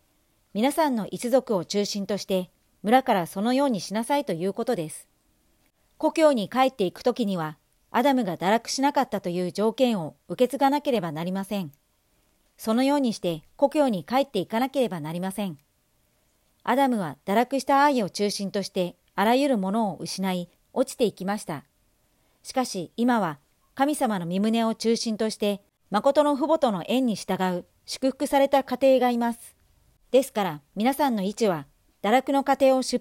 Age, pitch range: 40-59, 190-260 Hz